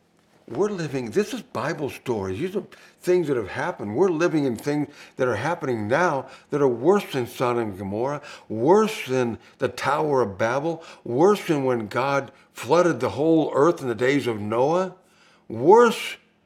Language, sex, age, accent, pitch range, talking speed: English, male, 60-79, American, 140-185 Hz, 170 wpm